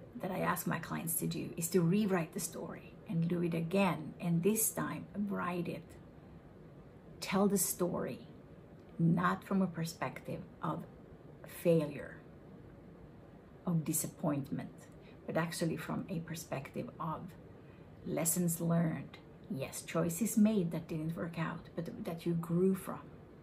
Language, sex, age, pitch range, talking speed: English, female, 50-69, 165-195 Hz, 135 wpm